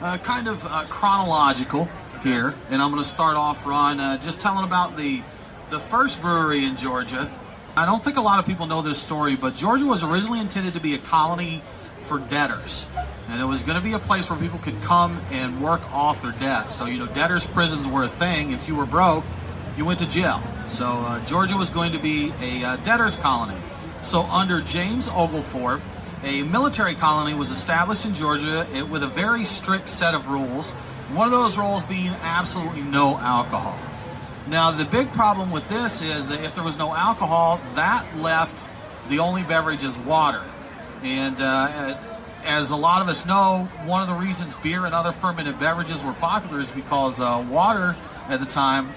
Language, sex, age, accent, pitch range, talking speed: English, male, 40-59, American, 135-180 Hz, 195 wpm